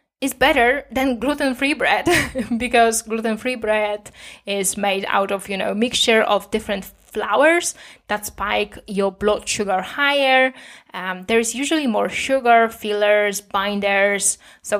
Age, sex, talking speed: 20-39, female, 135 wpm